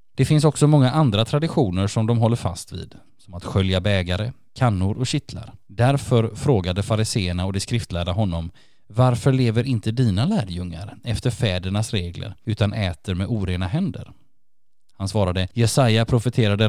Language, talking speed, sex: Swedish, 150 wpm, male